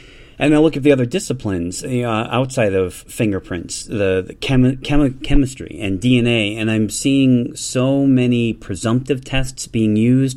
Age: 30-49